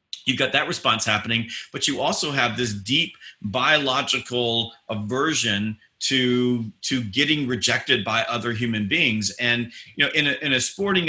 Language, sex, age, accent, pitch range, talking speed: English, male, 40-59, American, 115-135 Hz, 155 wpm